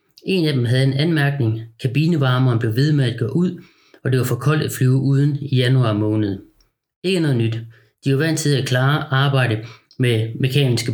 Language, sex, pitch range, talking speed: Danish, male, 120-140 Hz, 195 wpm